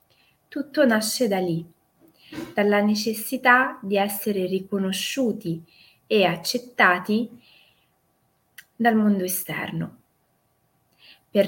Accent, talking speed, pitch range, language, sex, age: native, 80 wpm, 175-230 Hz, Italian, female, 20-39